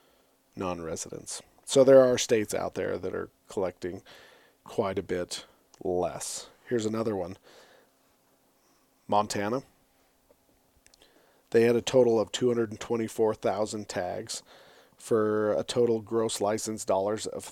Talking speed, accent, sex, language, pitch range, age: 120 wpm, American, male, English, 105-130 Hz, 40-59